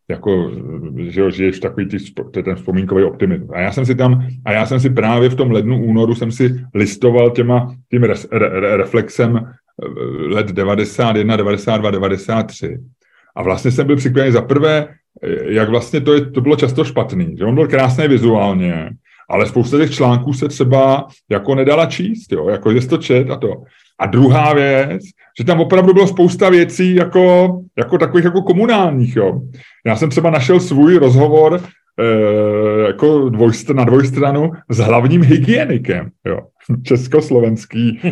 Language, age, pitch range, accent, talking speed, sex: Czech, 30-49, 120-165 Hz, native, 155 wpm, male